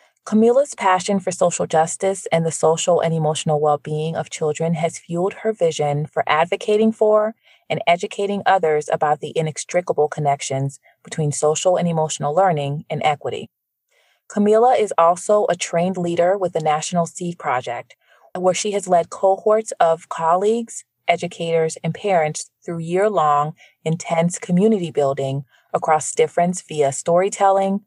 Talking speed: 140 wpm